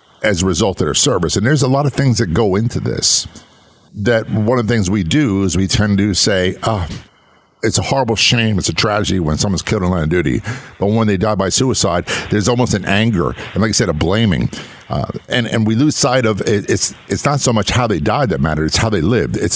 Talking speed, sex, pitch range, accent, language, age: 250 wpm, male, 95-130 Hz, American, English, 50-69